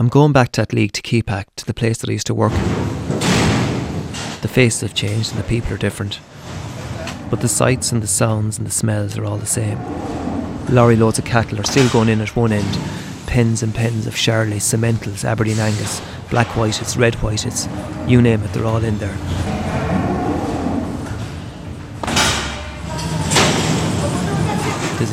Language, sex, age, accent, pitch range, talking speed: English, male, 30-49, Irish, 105-120 Hz, 165 wpm